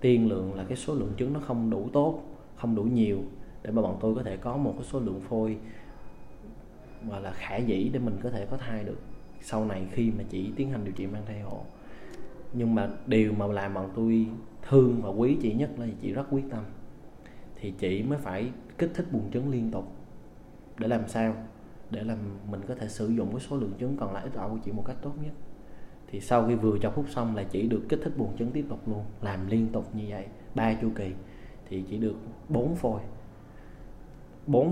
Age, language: 20-39, Vietnamese